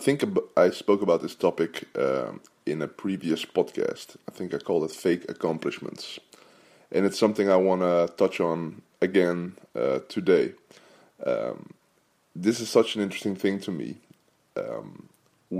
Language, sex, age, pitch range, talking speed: English, male, 20-39, 90-105 Hz, 155 wpm